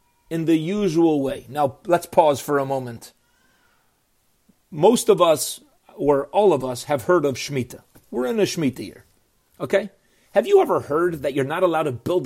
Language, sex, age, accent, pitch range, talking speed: English, male, 40-59, American, 140-225 Hz, 180 wpm